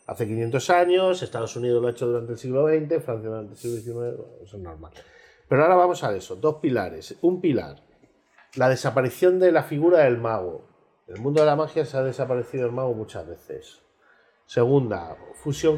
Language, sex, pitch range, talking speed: Spanish, male, 110-140 Hz, 195 wpm